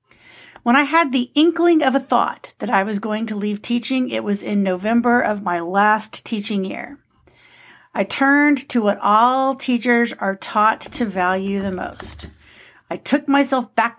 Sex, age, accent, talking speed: female, 50-69, American, 170 wpm